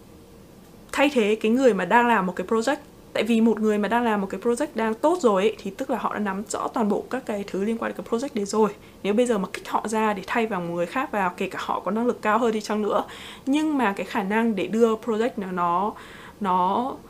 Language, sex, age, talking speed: Vietnamese, female, 20-39, 275 wpm